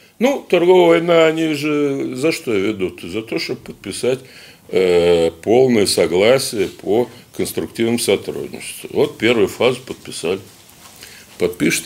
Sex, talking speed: male, 115 wpm